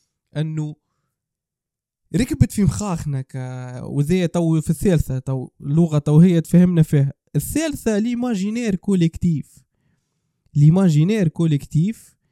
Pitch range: 145-180 Hz